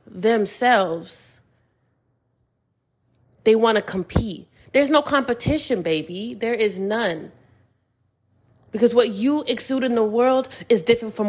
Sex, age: female, 20-39